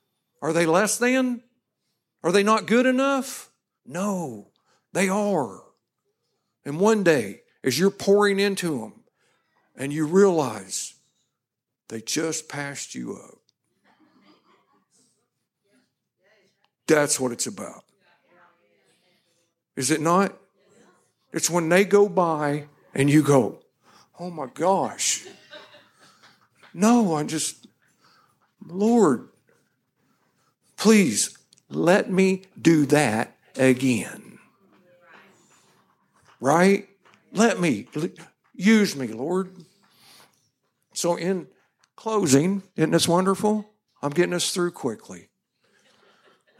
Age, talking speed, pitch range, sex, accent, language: 60-79, 95 wpm, 160-210 Hz, male, American, English